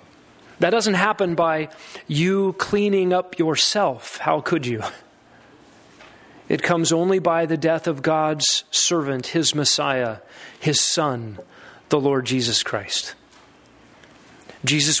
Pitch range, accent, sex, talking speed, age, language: 155-190 Hz, American, male, 115 wpm, 30-49, English